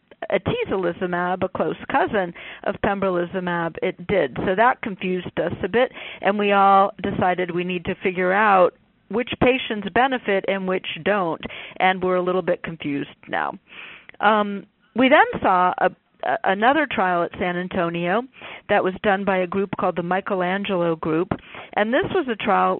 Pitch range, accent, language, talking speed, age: 180-210 Hz, American, English, 160 wpm, 40-59